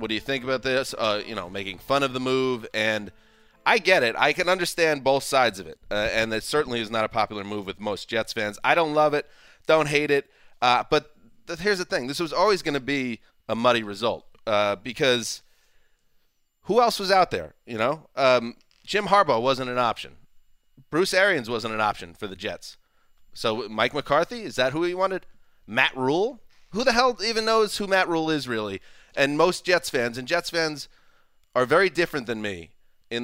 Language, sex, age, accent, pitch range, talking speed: English, male, 30-49, American, 110-155 Hz, 210 wpm